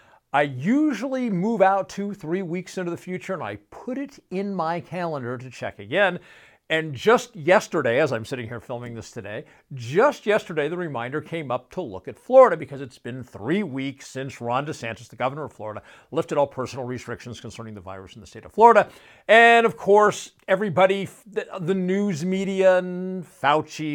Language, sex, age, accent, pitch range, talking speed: English, male, 50-69, American, 120-195 Hz, 185 wpm